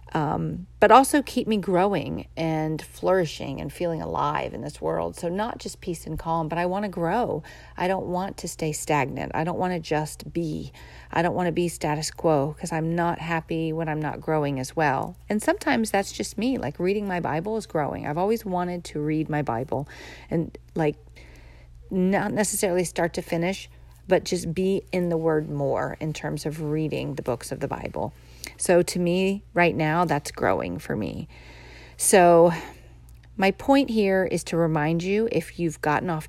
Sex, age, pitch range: female, 40-59, 140-180 Hz